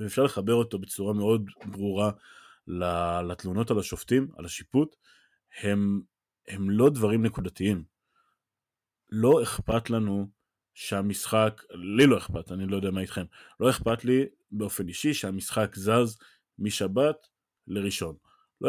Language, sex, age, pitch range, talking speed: Hebrew, male, 20-39, 100-125 Hz, 120 wpm